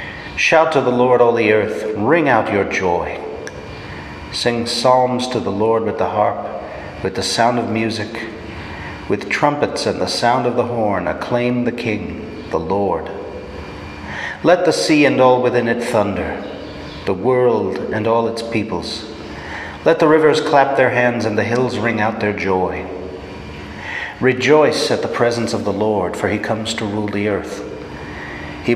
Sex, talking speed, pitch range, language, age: male, 165 wpm, 90-115 Hz, English, 40-59